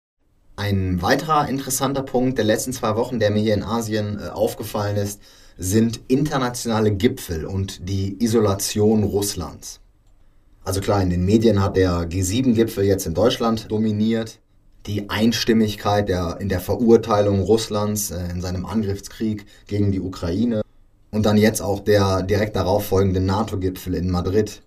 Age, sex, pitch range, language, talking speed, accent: 20-39, male, 95-110 Hz, German, 140 wpm, German